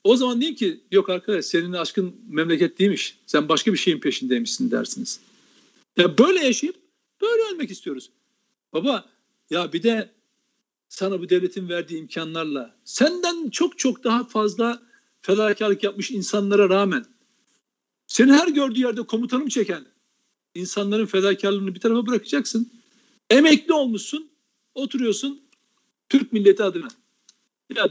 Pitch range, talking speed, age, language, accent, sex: 190-250 Hz, 125 wpm, 60-79, Turkish, native, male